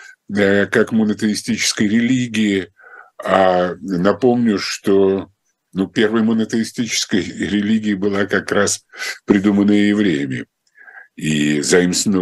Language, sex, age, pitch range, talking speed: Russian, male, 50-69, 95-145 Hz, 85 wpm